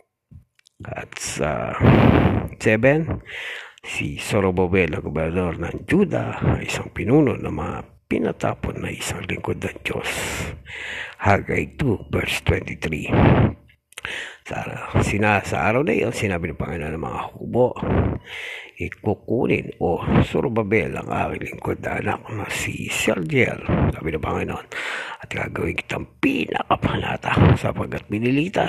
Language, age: Filipino, 50-69